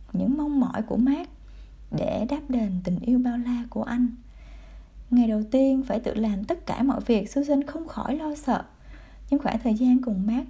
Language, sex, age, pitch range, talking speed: Vietnamese, female, 20-39, 215-280 Hz, 200 wpm